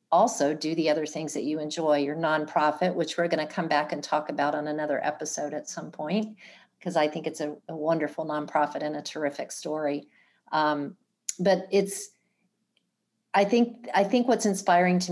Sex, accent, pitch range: female, American, 150-180 Hz